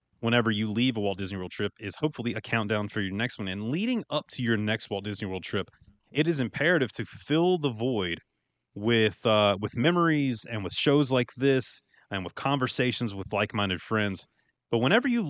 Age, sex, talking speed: 30-49, male, 200 wpm